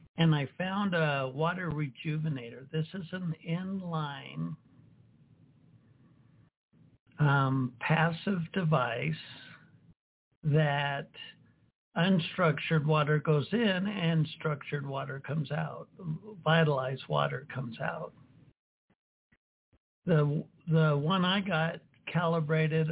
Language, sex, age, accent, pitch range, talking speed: English, male, 60-79, American, 150-170 Hz, 85 wpm